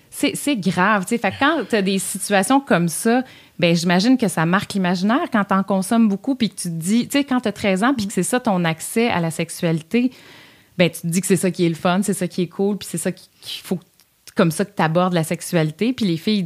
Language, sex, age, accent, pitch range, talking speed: French, female, 30-49, Canadian, 170-220 Hz, 275 wpm